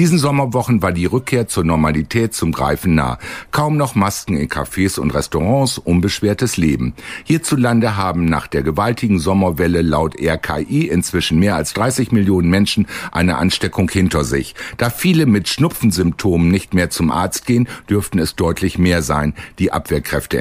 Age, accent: 60-79, German